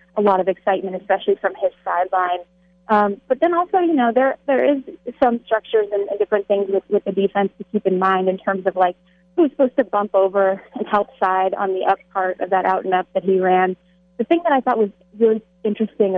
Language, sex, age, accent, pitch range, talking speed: English, female, 30-49, American, 190-215 Hz, 235 wpm